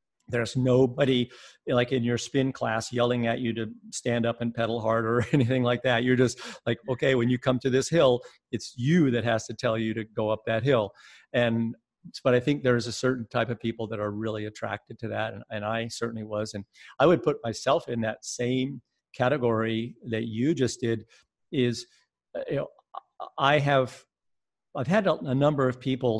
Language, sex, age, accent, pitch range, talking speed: English, male, 50-69, American, 110-130 Hz, 200 wpm